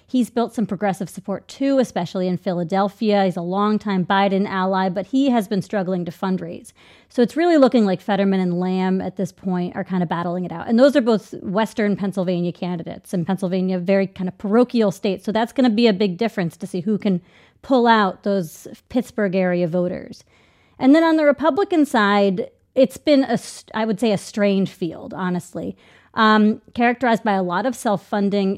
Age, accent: 30-49, American